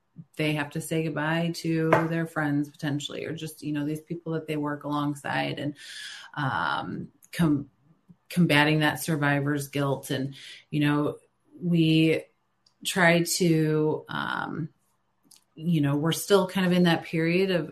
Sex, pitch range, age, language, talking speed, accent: female, 145-160 Hz, 30-49, English, 145 wpm, American